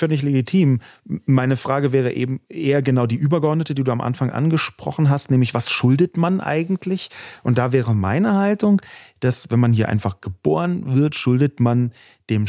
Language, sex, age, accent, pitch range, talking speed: German, male, 30-49, German, 120-175 Hz, 180 wpm